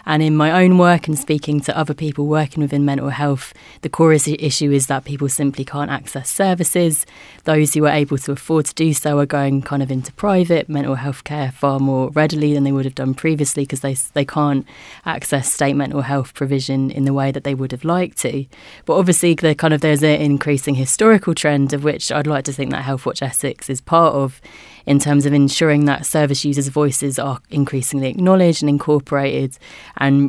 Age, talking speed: 20-39, 210 wpm